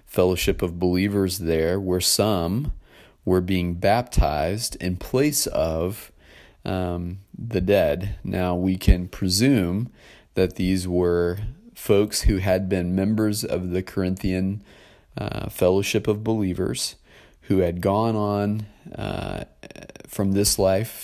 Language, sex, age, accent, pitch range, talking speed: English, male, 30-49, American, 90-100 Hz, 120 wpm